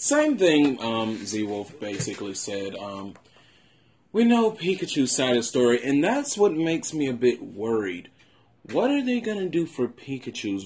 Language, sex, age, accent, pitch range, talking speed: English, male, 20-39, American, 105-140 Hz, 165 wpm